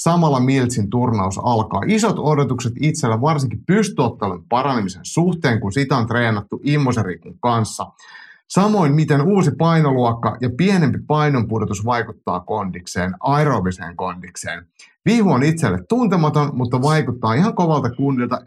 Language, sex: Finnish, male